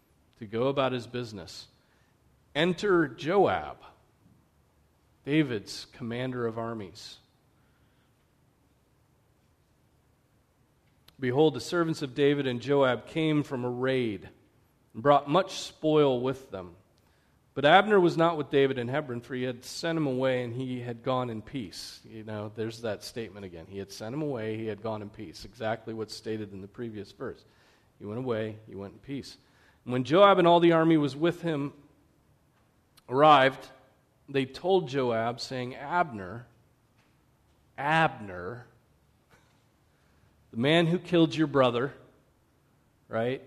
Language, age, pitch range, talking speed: English, 40-59, 115-150 Hz, 140 wpm